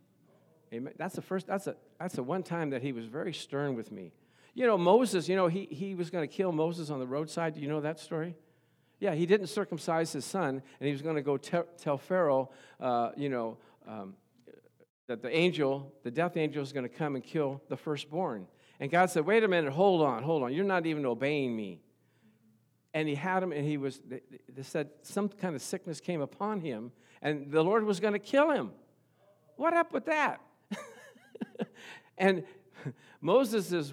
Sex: male